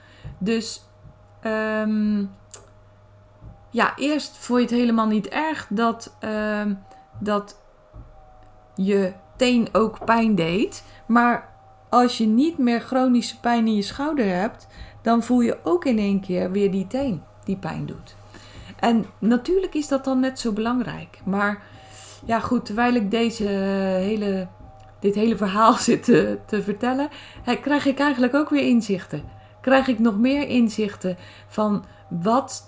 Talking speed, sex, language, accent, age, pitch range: 140 wpm, female, Dutch, Dutch, 20-39, 175-235 Hz